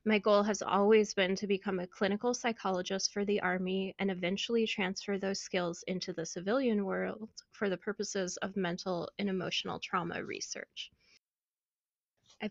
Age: 20-39